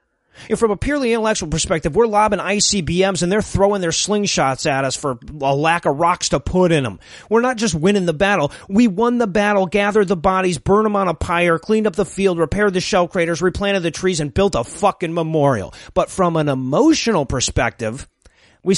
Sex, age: male, 30-49